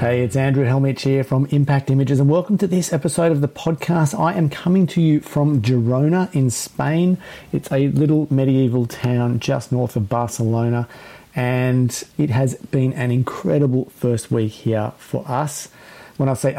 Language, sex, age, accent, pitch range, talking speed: English, male, 40-59, Australian, 120-150 Hz, 175 wpm